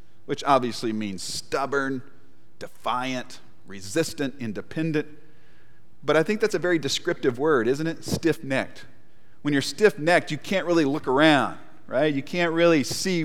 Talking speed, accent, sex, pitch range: 140 wpm, American, male, 115-160 Hz